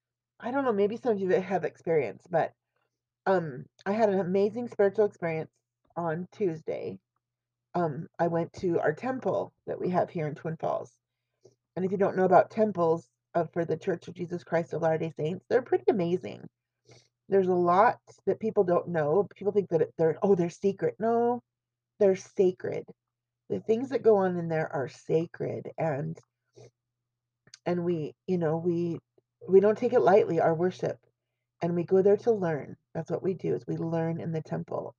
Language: English